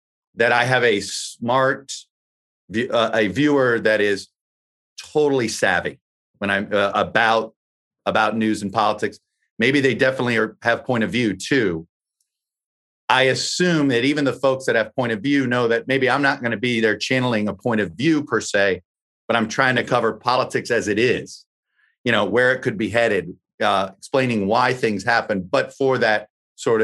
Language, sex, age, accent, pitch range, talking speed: English, male, 40-59, American, 100-130 Hz, 180 wpm